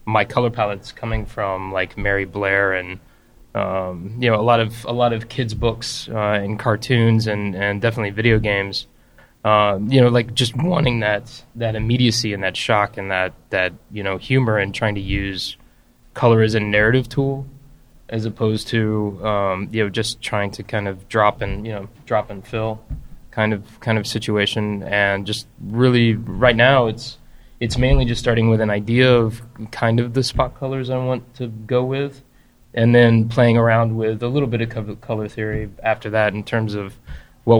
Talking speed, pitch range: 190 wpm, 100-120 Hz